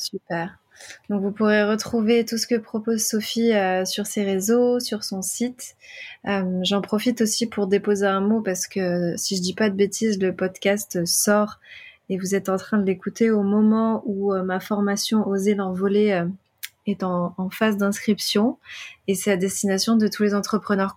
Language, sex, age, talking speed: French, female, 20-39, 185 wpm